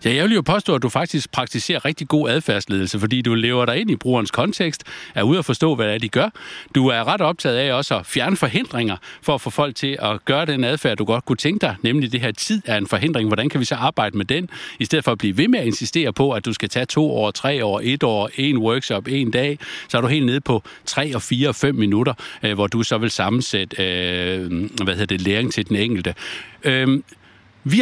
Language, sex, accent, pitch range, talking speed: Danish, male, native, 115-150 Hz, 250 wpm